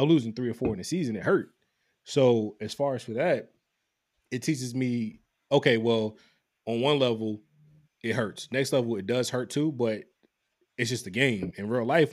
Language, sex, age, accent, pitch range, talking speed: English, male, 20-39, American, 100-120 Hz, 195 wpm